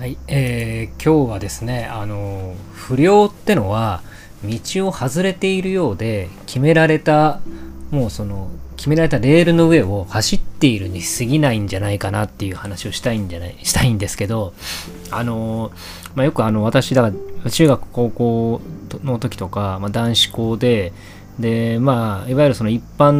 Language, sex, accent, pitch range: Japanese, male, native, 95-120 Hz